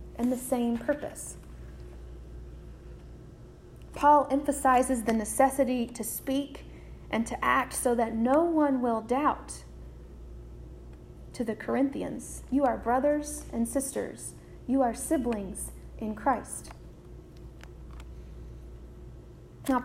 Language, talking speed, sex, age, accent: English, 100 wpm, female, 40-59, American